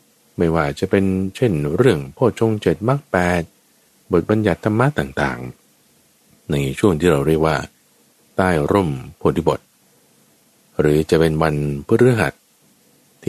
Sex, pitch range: male, 75-110 Hz